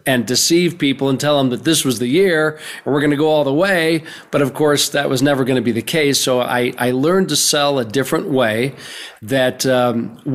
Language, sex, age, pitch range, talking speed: English, male, 40-59, 130-155 Hz, 240 wpm